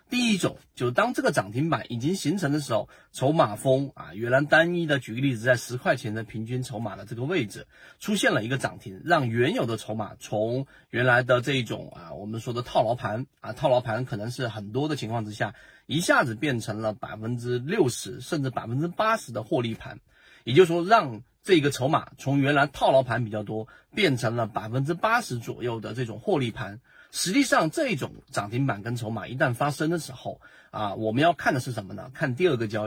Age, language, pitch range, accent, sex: 30-49, Chinese, 115-155 Hz, native, male